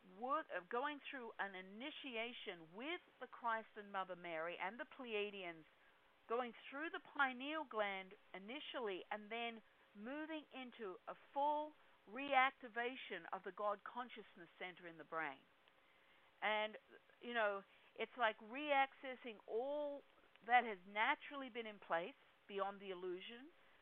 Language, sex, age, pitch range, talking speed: English, female, 50-69, 195-270 Hz, 130 wpm